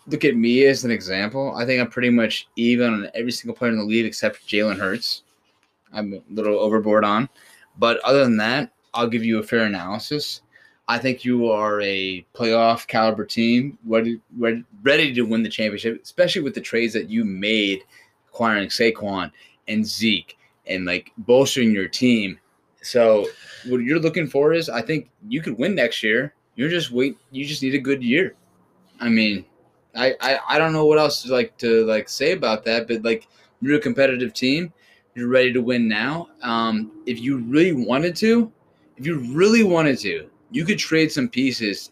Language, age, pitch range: English, 20-39, 110-140 Hz